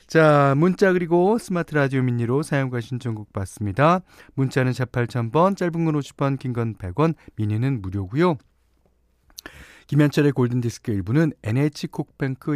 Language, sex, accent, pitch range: Korean, male, native, 110-155 Hz